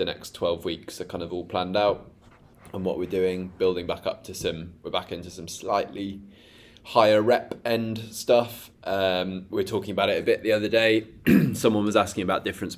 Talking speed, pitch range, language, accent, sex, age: 205 wpm, 85-100 Hz, English, British, male, 20-39